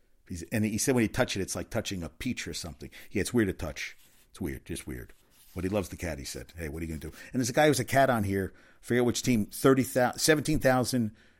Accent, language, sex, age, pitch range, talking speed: American, English, male, 50-69, 85-110 Hz, 275 wpm